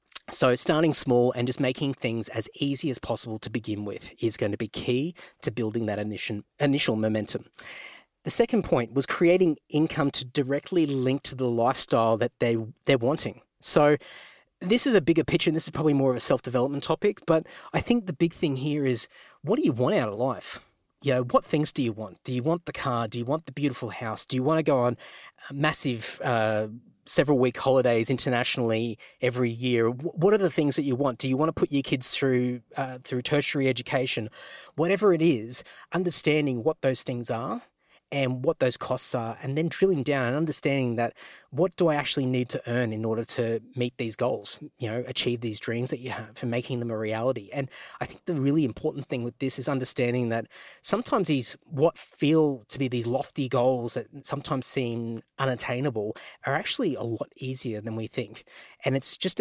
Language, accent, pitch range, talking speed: English, Australian, 120-150 Hz, 205 wpm